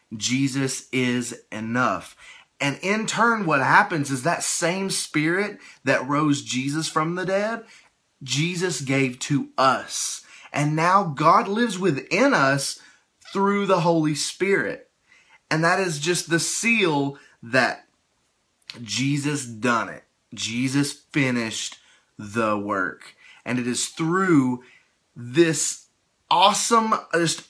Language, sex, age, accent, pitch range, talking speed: English, male, 30-49, American, 120-160 Hz, 115 wpm